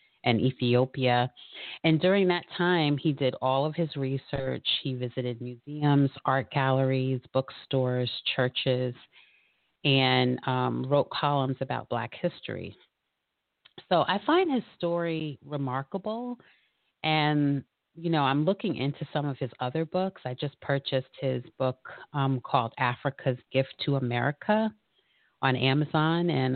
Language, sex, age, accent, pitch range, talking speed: English, female, 30-49, American, 130-160 Hz, 130 wpm